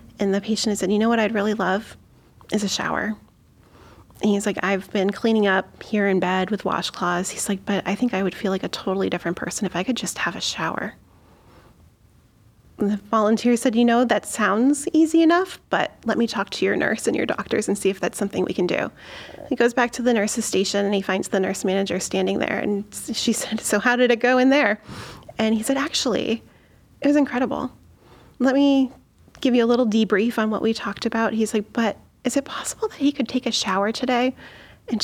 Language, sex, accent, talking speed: English, female, American, 225 wpm